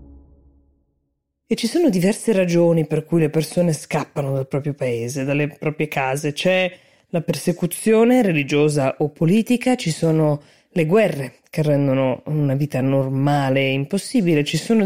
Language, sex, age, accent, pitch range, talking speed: Italian, female, 20-39, native, 140-165 Hz, 140 wpm